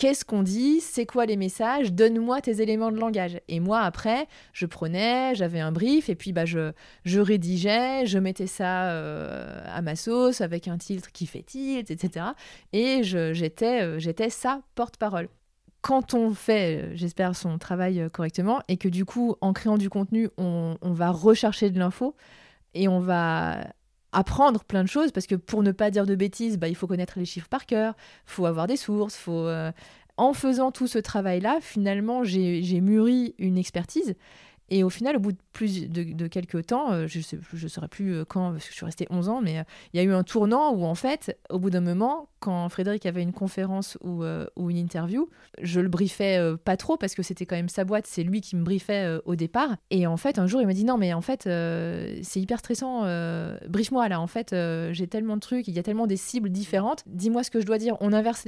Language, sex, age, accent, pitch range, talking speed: French, female, 30-49, French, 175-230 Hz, 225 wpm